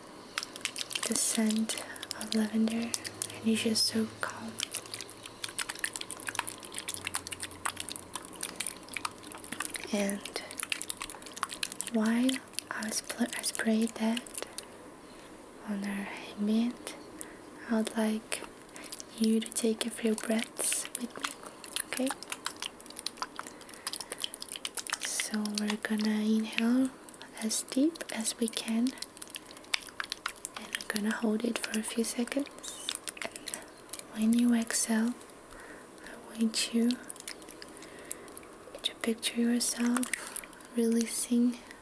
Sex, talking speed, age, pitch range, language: female, 85 wpm, 20-39, 220-245 Hz, English